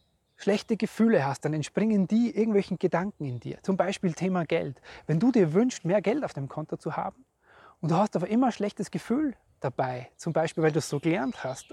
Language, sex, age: German, male, 30-49